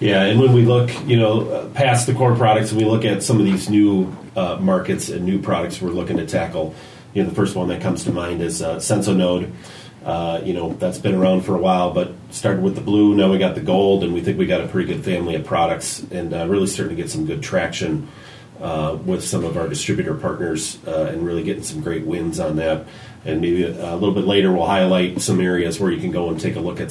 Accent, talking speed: American, 255 wpm